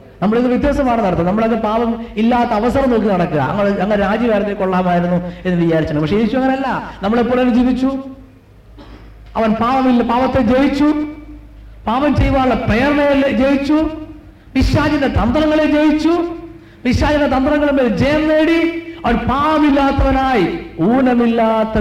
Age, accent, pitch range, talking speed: 50-69, native, 180-305 Hz, 95 wpm